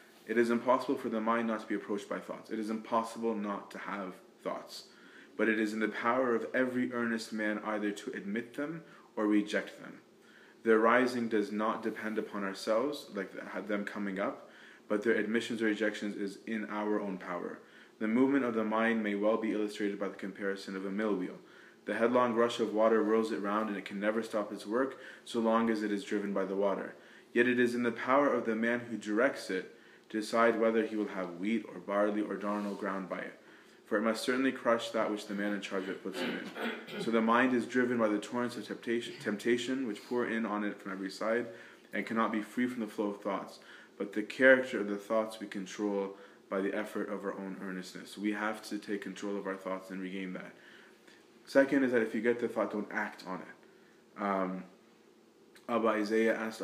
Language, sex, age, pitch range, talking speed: English, male, 20-39, 100-115 Hz, 220 wpm